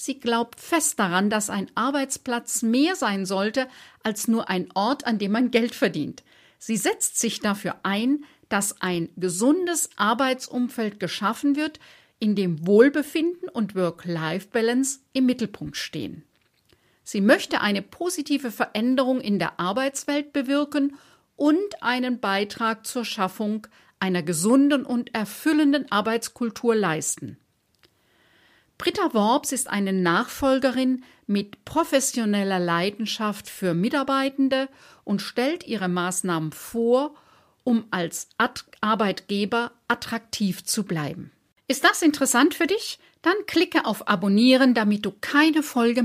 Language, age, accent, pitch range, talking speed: German, 50-69, German, 200-270 Hz, 120 wpm